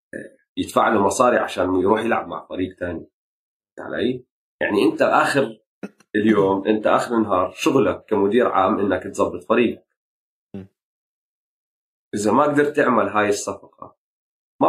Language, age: Arabic, 30-49